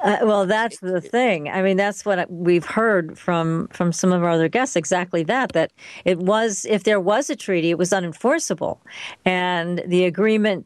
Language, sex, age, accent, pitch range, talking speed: English, female, 50-69, American, 175-220 Hz, 190 wpm